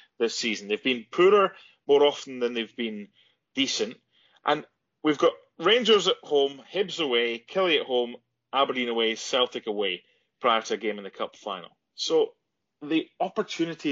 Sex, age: male, 30-49